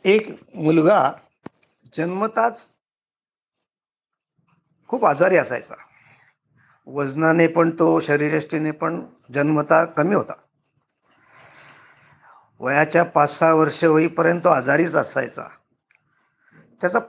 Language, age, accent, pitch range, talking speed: Marathi, 50-69, native, 145-185 Hz, 75 wpm